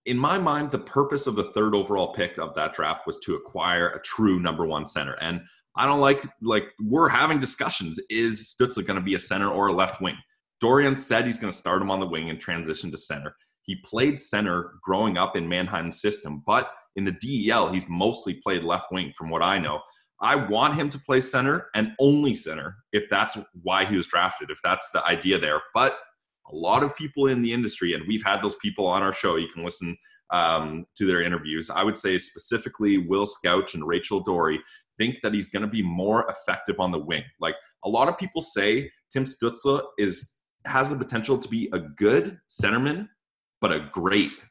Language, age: English, 30-49